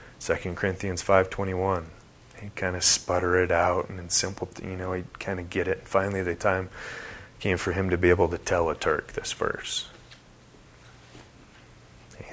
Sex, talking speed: male, 185 wpm